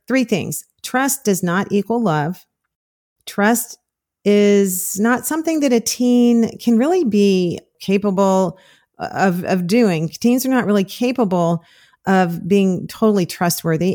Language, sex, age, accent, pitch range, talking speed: English, female, 40-59, American, 170-220 Hz, 130 wpm